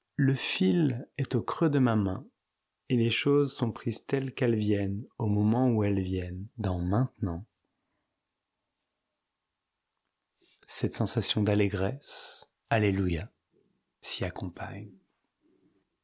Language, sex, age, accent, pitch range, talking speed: French, male, 30-49, French, 105-135 Hz, 110 wpm